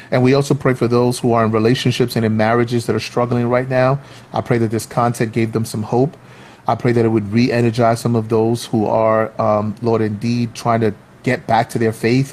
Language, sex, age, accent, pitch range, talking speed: English, male, 30-49, American, 110-125 Hz, 235 wpm